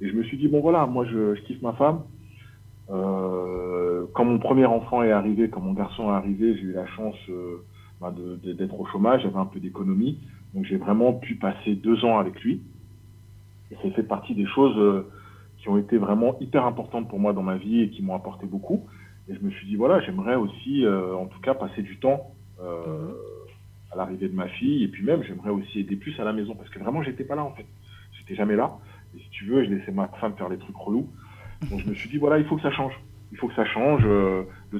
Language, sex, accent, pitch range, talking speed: French, male, French, 95-115 Hz, 245 wpm